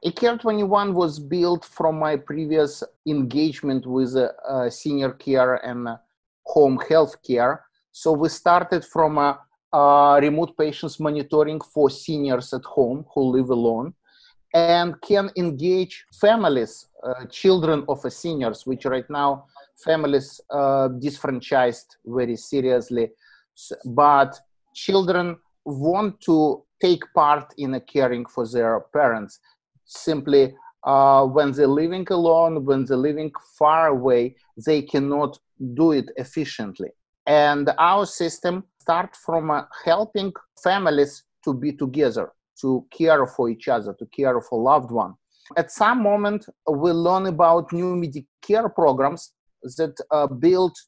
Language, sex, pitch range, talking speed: English, male, 135-170 Hz, 135 wpm